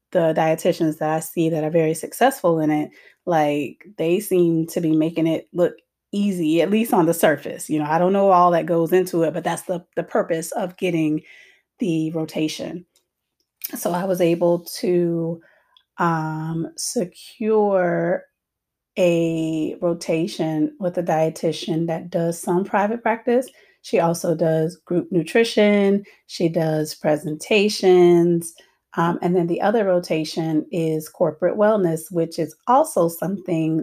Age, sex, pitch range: 30-49, female, 165-190 Hz